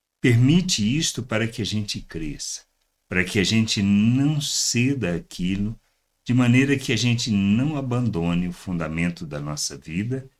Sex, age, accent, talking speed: male, 60-79, Brazilian, 150 wpm